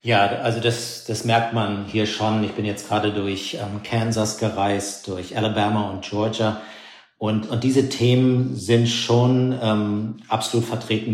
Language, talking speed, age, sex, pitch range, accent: German, 155 wpm, 50-69, male, 100-115 Hz, German